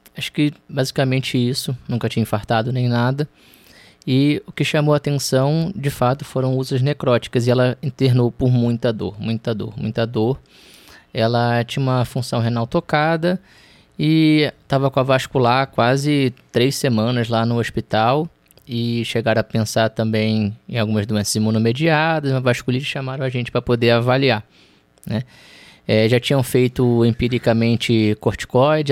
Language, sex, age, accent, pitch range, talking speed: Portuguese, male, 20-39, Brazilian, 115-135 Hz, 145 wpm